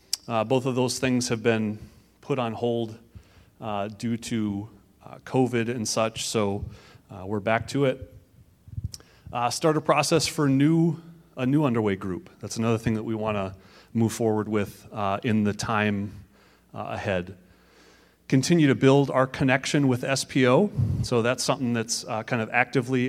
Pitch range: 105-130 Hz